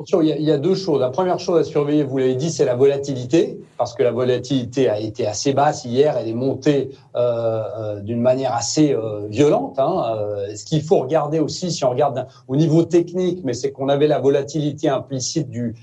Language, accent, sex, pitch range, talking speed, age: French, French, male, 135-180 Hz, 205 wpm, 40-59